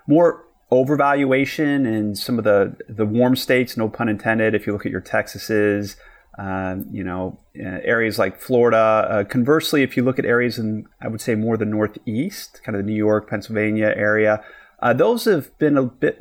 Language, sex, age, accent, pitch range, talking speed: English, male, 30-49, American, 105-130 Hz, 190 wpm